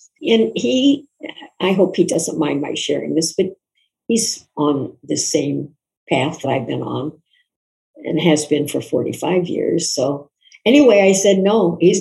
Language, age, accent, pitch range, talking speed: English, 60-79, American, 175-275 Hz, 160 wpm